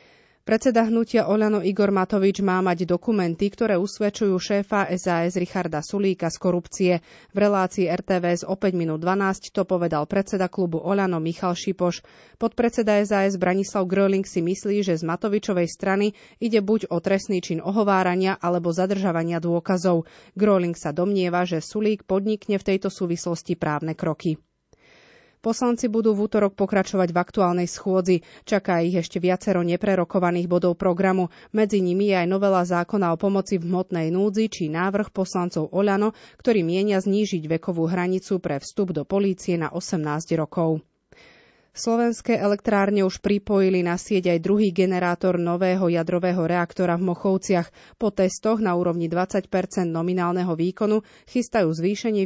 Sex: female